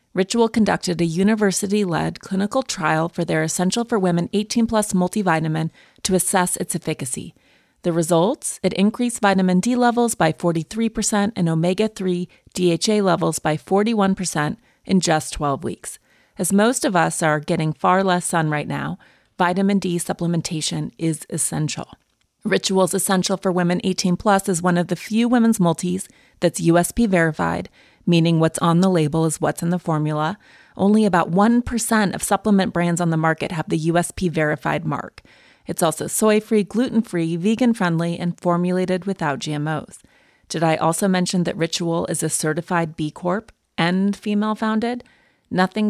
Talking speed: 150 wpm